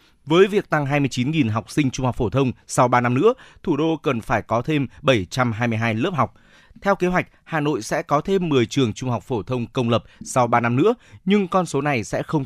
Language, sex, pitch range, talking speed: Vietnamese, male, 115-145 Hz, 235 wpm